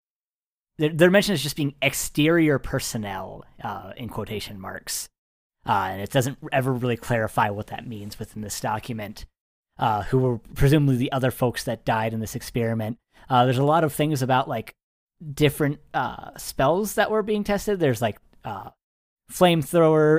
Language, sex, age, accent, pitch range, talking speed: English, male, 30-49, American, 115-145 Hz, 165 wpm